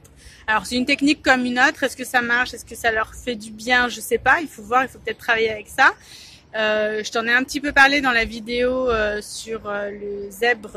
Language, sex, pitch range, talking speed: French, female, 225-265 Hz, 255 wpm